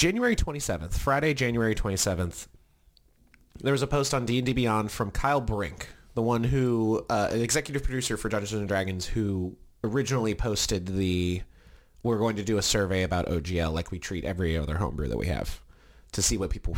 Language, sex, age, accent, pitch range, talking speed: English, male, 30-49, American, 85-125 Hz, 180 wpm